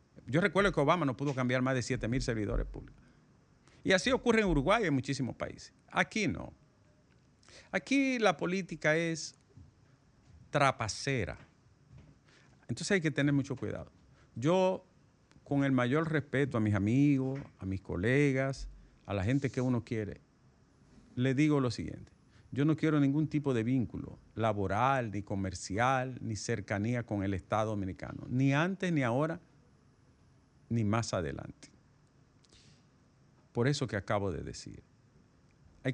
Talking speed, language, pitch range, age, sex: 140 wpm, Spanish, 115-160 Hz, 50-69, male